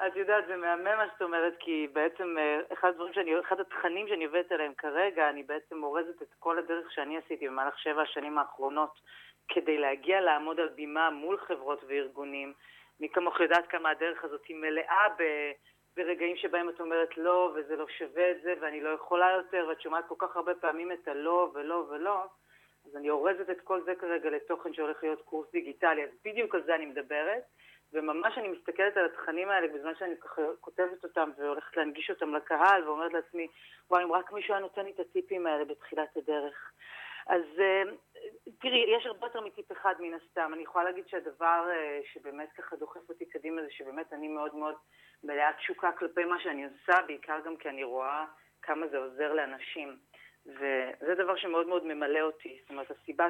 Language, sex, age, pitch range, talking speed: Hebrew, female, 30-49, 155-180 Hz, 180 wpm